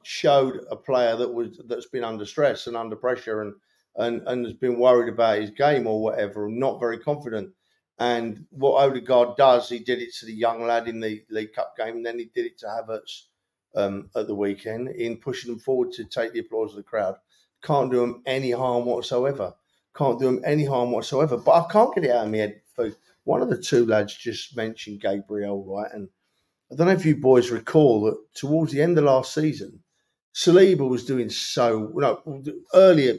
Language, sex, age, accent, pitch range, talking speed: English, male, 50-69, British, 110-145 Hz, 215 wpm